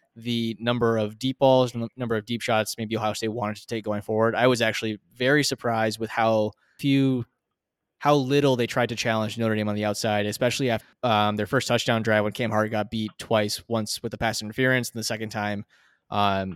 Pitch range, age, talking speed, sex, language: 110-130 Hz, 20-39, 220 wpm, male, English